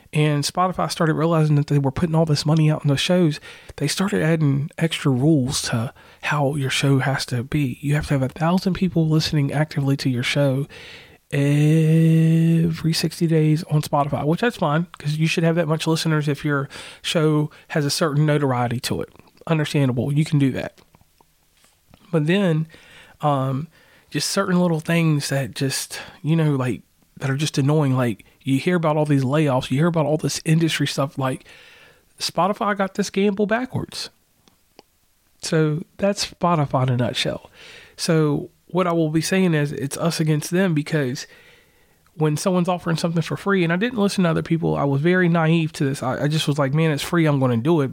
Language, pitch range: English, 135-165 Hz